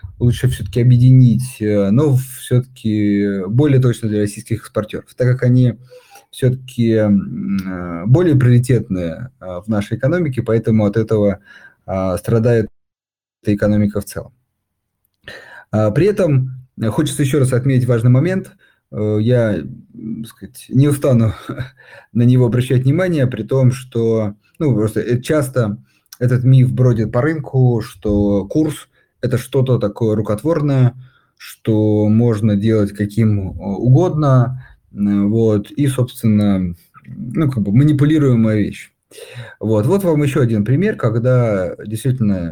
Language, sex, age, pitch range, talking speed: Russian, male, 30-49, 105-130 Hz, 115 wpm